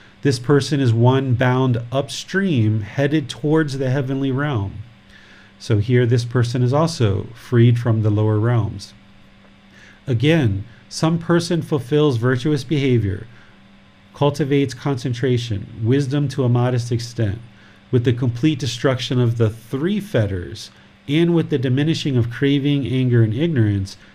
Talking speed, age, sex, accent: 130 wpm, 40-59, male, American